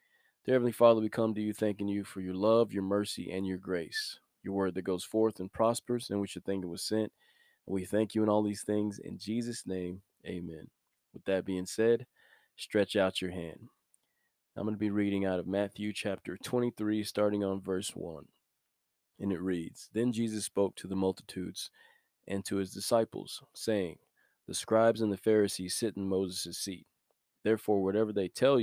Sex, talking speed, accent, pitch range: male, 190 wpm, American, 95-110 Hz